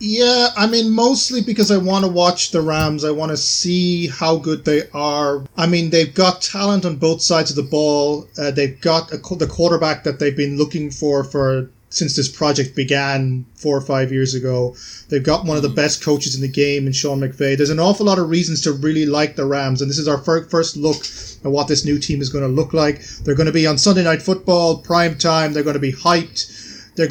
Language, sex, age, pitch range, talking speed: English, male, 30-49, 140-170 Hz, 235 wpm